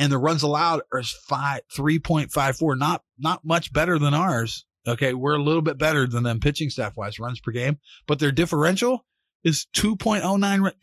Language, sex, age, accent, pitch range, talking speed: English, male, 30-49, American, 120-160 Hz, 165 wpm